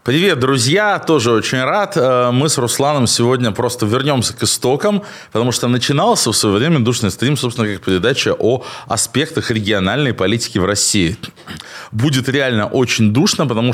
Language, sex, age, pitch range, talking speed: Russian, male, 20-39, 110-145 Hz, 155 wpm